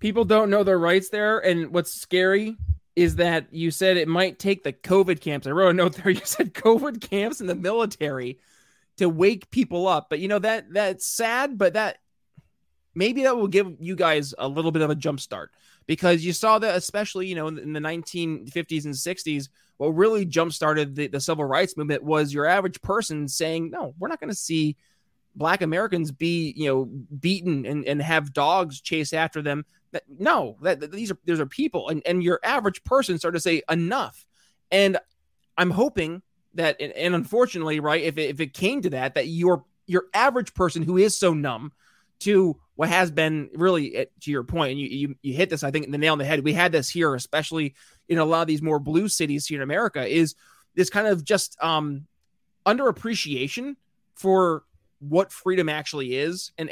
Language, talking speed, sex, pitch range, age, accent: English, 205 wpm, male, 150-190 Hz, 20-39, American